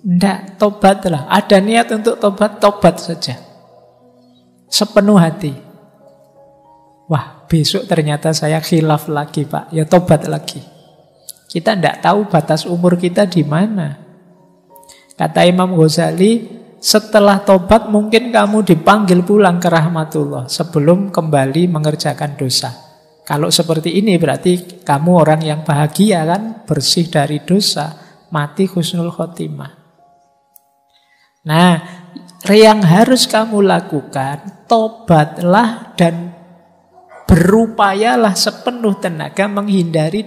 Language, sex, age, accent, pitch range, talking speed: Indonesian, male, 50-69, native, 155-200 Hz, 105 wpm